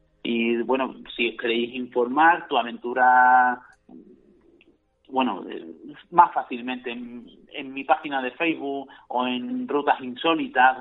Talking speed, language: 115 wpm, Spanish